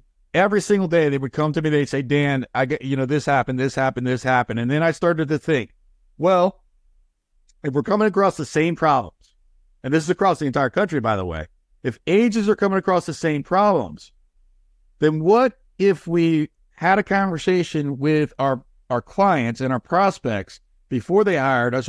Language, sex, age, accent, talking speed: English, male, 60-79, American, 195 wpm